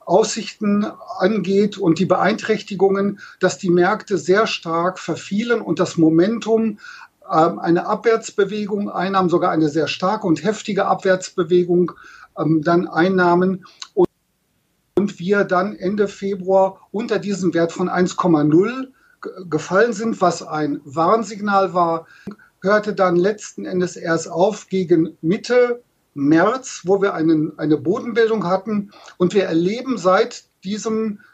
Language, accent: German, German